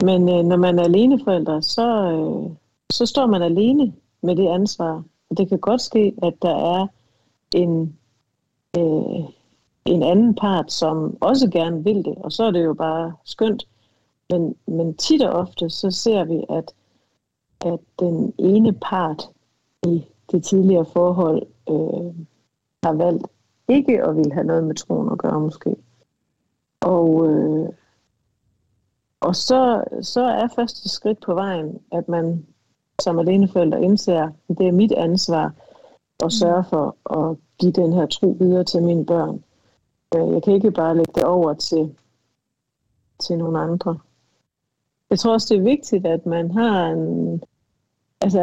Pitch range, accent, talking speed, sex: 160-200 Hz, native, 155 wpm, female